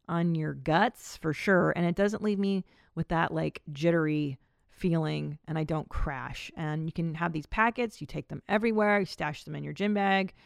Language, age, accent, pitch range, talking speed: English, 40-59, American, 155-210 Hz, 205 wpm